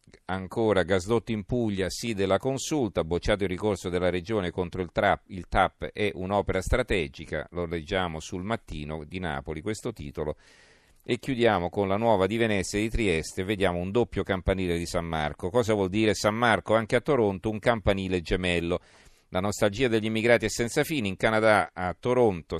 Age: 40-59